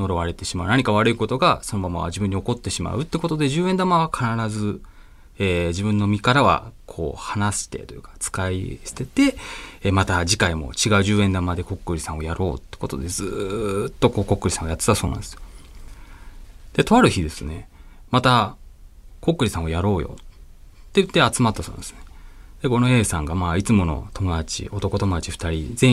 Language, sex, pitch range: Japanese, male, 90-135 Hz